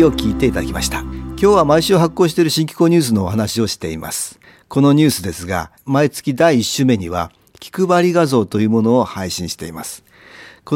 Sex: male